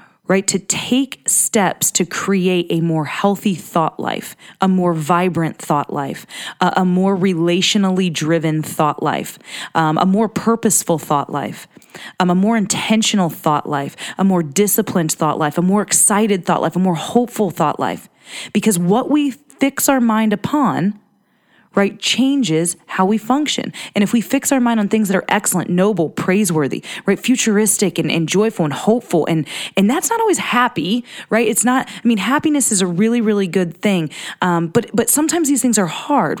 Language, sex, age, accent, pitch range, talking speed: English, female, 20-39, American, 175-225 Hz, 180 wpm